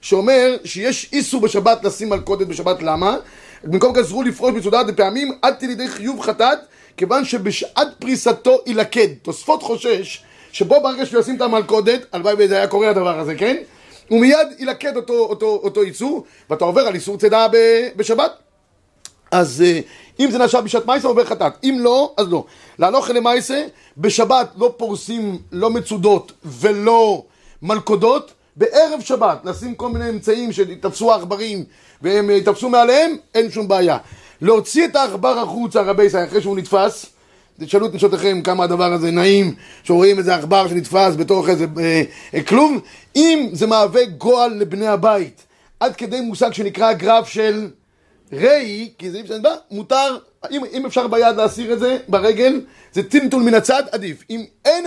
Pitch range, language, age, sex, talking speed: 200-255 Hz, Hebrew, 30-49, male, 150 wpm